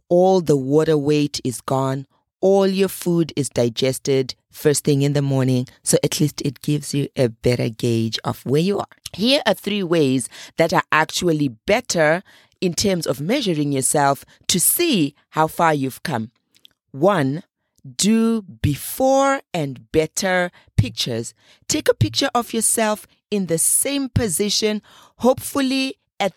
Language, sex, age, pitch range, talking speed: English, female, 30-49, 145-210 Hz, 150 wpm